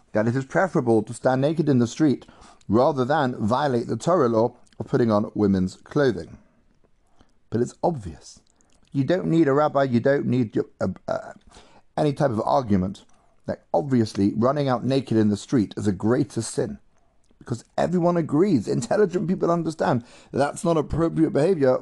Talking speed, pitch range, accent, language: 170 wpm, 125-165 Hz, British, English